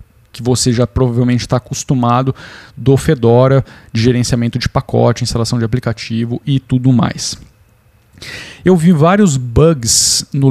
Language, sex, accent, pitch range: Portuguese, male, Brazilian, 120-150 Hz